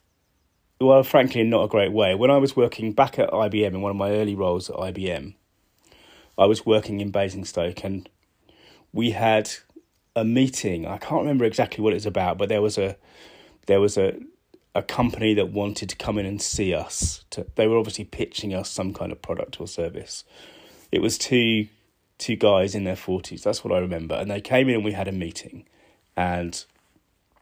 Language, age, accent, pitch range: English, 30-49, British, 95-115 Hz